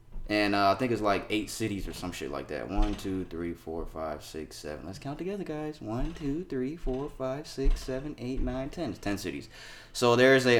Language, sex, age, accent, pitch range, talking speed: English, male, 20-39, American, 90-115 Hz, 225 wpm